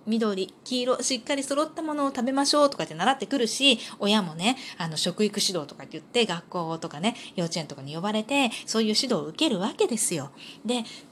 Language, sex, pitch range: Japanese, female, 175-250 Hz